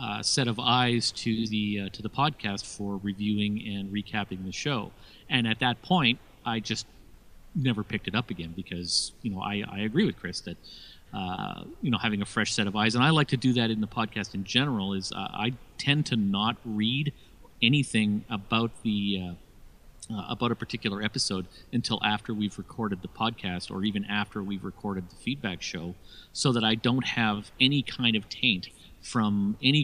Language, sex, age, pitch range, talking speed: English, male, 40-59, 100-120 Hz, 195 wpm